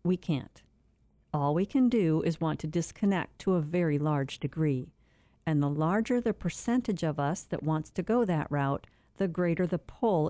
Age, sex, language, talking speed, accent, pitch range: 50-69, female, English, 185 wpm, American, 150-200 Hz